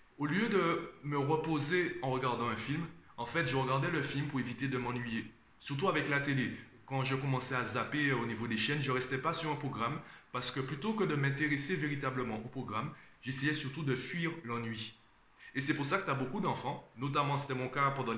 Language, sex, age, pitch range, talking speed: French, male, 30-49, 120-145 Hz, 220 wpm